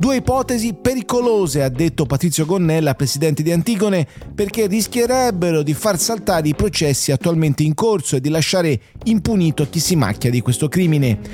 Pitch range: 140-180 Hz